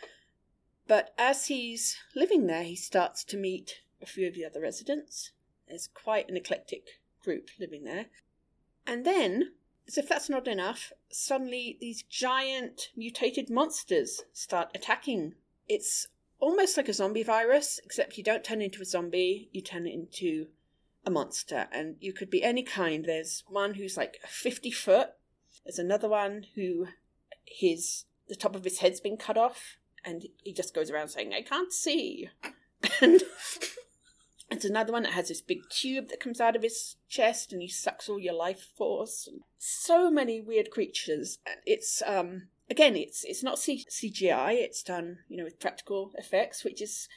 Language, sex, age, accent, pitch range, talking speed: English, female, 40-59, British, 185-315 Hz, 170 wpm